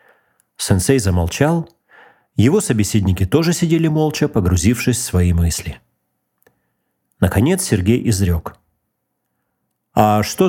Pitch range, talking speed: 95-145 Hz, 90 wpm